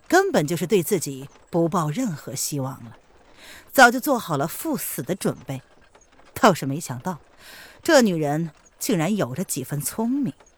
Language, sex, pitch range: Chinese, female, 165-260 Hz